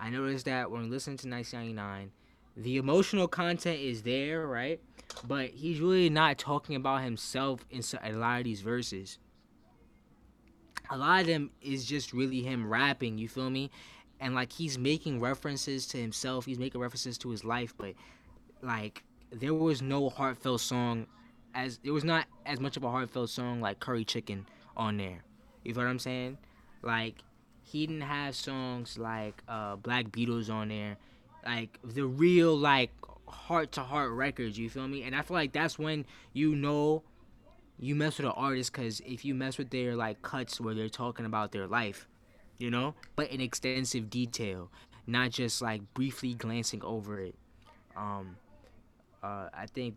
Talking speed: 170 wpm